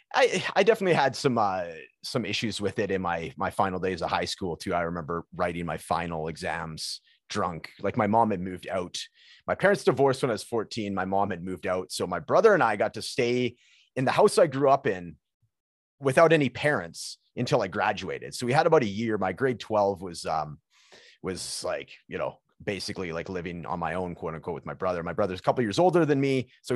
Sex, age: male, 30-49